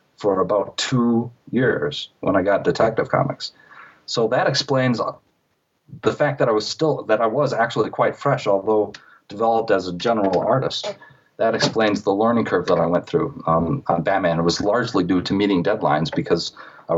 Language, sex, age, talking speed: English, male, 40-59, 180 wpm